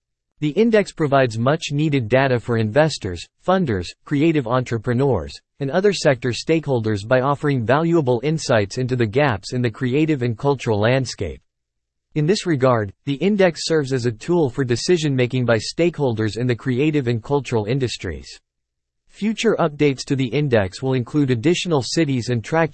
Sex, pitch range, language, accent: male, 115-150 Hz, English, American